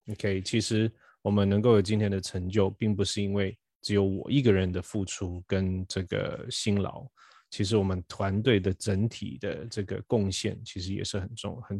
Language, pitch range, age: Chinese, 95-115 Hz, 20-39